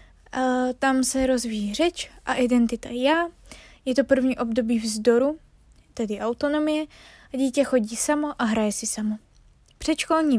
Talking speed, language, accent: 135 wpm, Czech, native